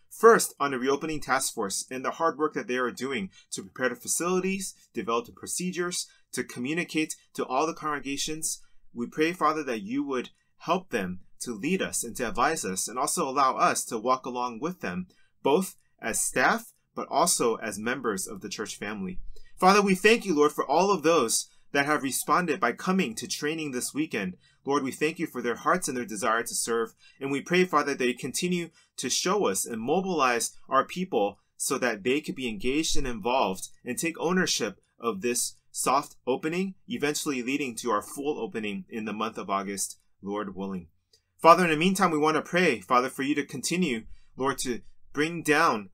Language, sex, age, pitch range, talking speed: English, male, 30-49, 125-175 Hz, 195 wpm